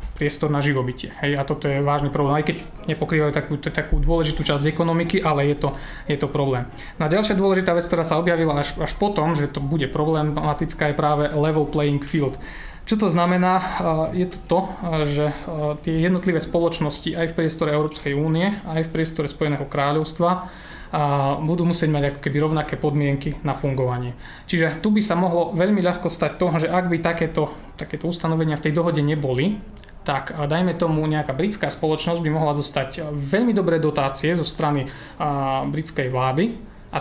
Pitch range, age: 145-170 Hz, 20-39